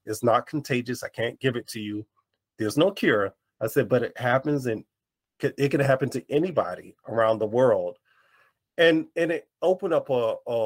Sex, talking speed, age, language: male, 185 wpm, 30-49, English